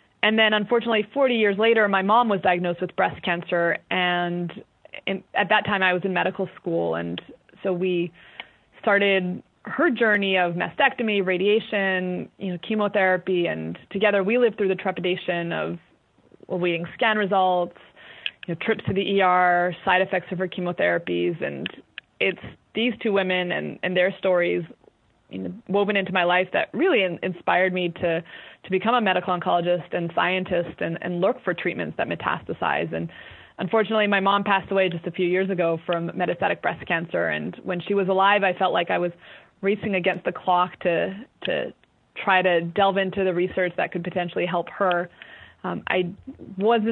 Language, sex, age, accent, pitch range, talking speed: English, female, 20-39, American, 175-205 Hz, 175 wpm